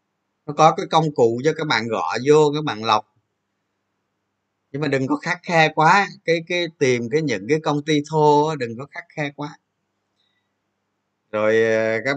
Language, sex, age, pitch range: Vietnamese, male, 20-39, 110-150 Hz